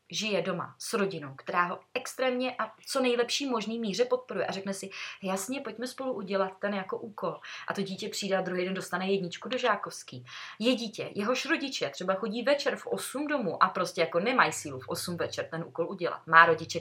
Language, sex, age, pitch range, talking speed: Czech, female, 30-49, 165-205 Hz, 205 wpm